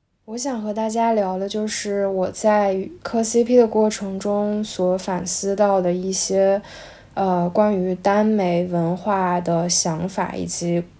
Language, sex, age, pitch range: Chinese, female, 10-29, 175-205 Hz